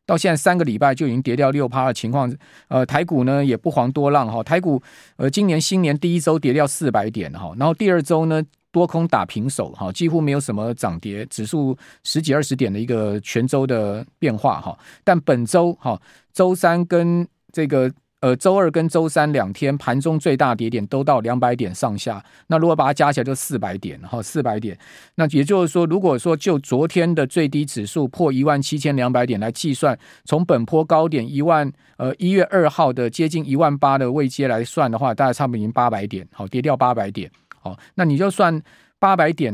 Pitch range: 120-160 Hz